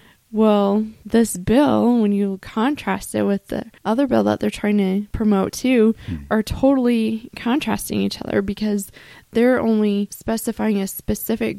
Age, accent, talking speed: 20-39, American, 145 wpm